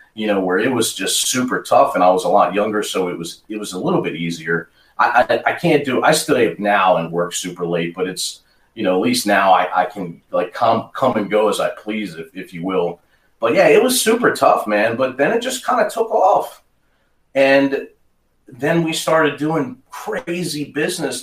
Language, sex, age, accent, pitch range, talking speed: English, male, 40-59, American, 90-140 Hz, 225 wpm